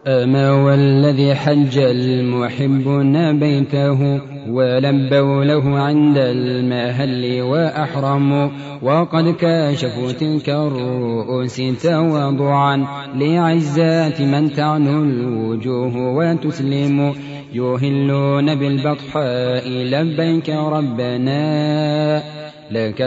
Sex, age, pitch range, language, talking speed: male, 30-49, 130-150 Hz, Arabic, 65 wpm